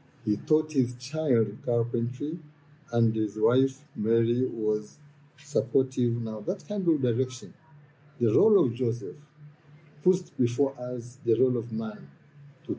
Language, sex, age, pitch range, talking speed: English, male, 50-69, 120-150 Hz, 130 wpm